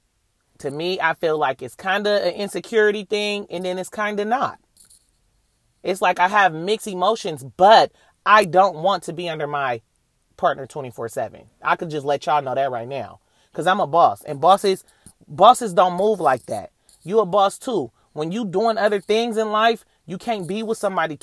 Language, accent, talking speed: English, American, 200 wpm